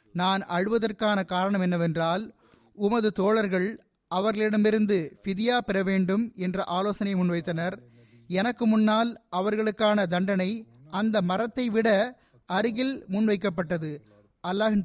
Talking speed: 95 wpm